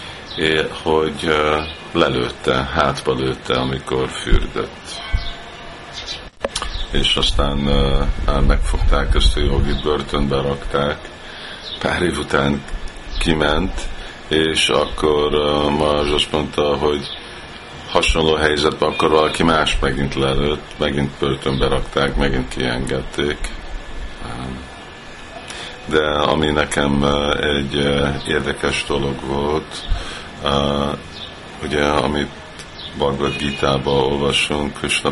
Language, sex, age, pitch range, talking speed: Hungarian, male, 50-69, 70-75 Hz, 95 wpm